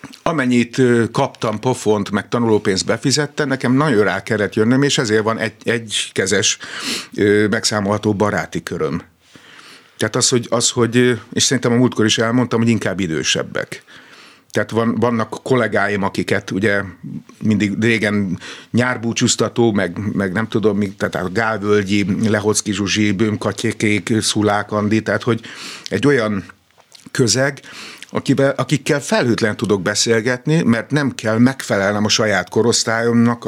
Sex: male